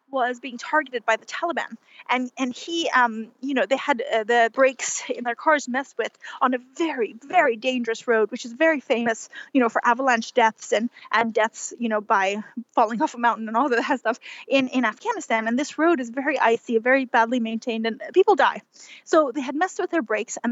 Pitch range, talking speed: 235-310 Hz, 215 wpm